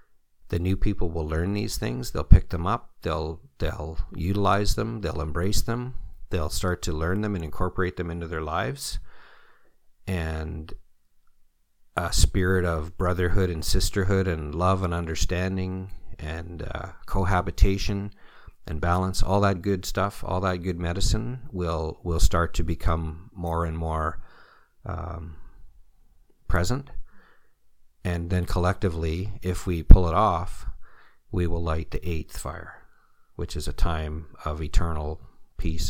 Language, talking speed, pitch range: English, 140 wpm, 80-95 Hz